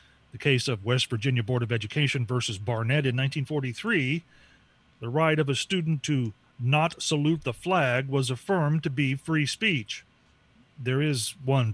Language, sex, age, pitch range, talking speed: English, male, 40-59, 125-160 Hz, 160 wpm